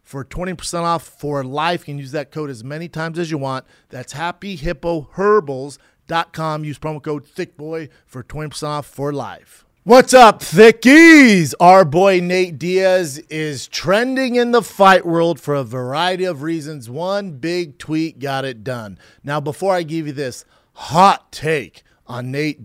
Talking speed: 160 wpm